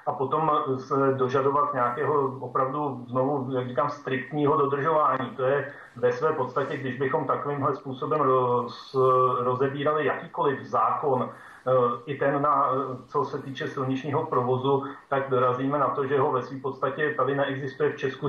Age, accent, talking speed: 40-59, native, 150 wpm